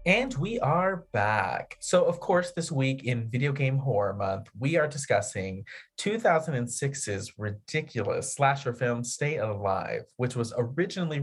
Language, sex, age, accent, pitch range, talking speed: English, male, 30-49, American, 110-150 Hz, 140 wpm